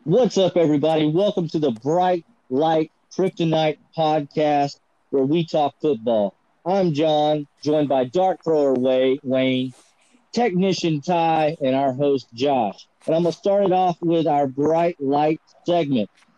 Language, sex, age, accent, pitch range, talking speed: English, male, 40-59, American, 140-180 Hz, 145 wpm